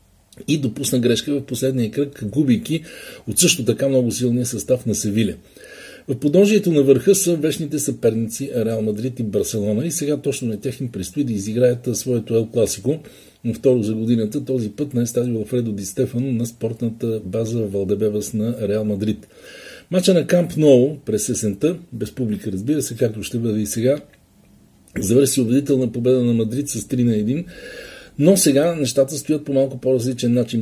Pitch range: 115-140 Hz